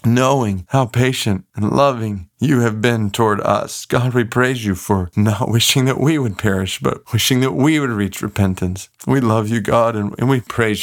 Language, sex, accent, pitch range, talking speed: English, male, American, 105-135 Hz, 195 wpm